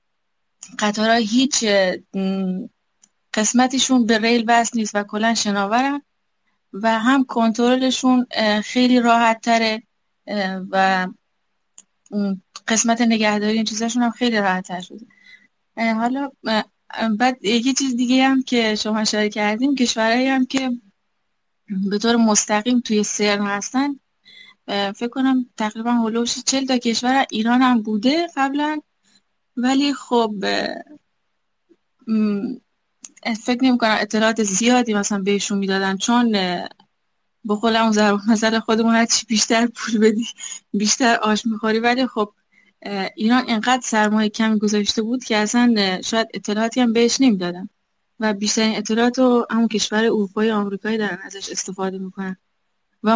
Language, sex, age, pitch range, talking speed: Persian, female, 20-39, 210-245 Hz, 120 wpm